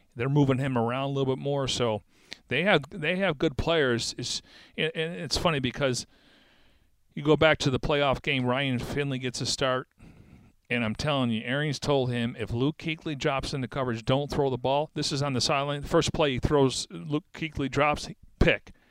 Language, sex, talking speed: English, male, 195 wpm